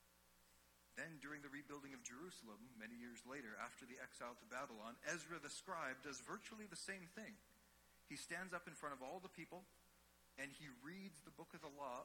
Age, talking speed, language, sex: 40-59, 195 wpm, English, male